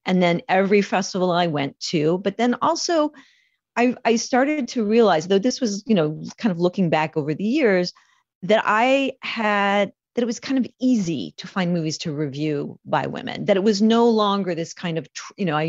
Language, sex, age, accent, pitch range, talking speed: English, female, 40-59, American, 155-230 Hz, 205 wpm